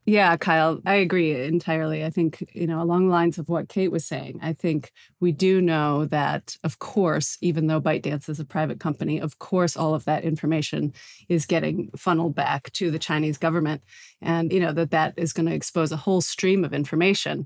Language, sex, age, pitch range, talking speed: English, female, 30-49, 160-185 Hz, 205 wpm